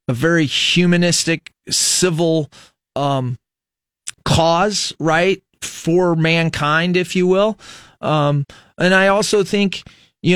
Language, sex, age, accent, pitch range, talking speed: English, male, 30-49, American, 140-165 Hz, 105 wpm